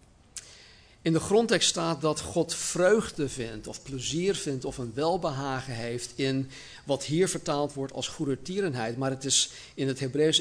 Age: 50-69